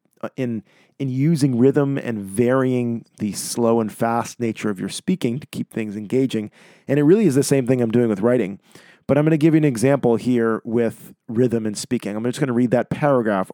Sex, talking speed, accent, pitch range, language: male, 215 wpm, American, 115-150 Hz, English